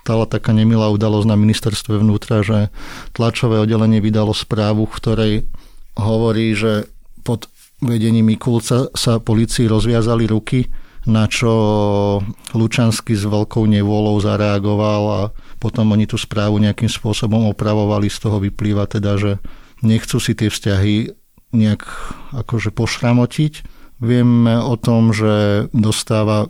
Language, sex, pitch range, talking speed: Slovak, male, 105-115 Hz, 125 wpm